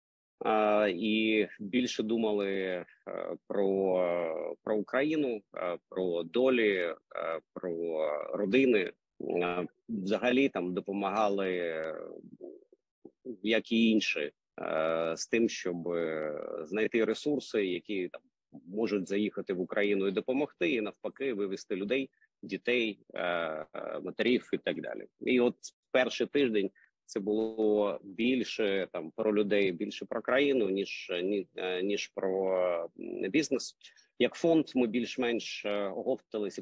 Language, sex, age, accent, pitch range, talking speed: Ukrainian, male, 30-49, native, 95-115 Hz, 100 wpm